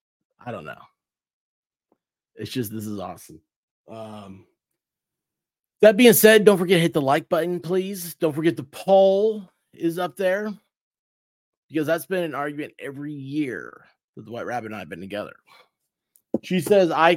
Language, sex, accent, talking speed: English, male, American, 160 wpm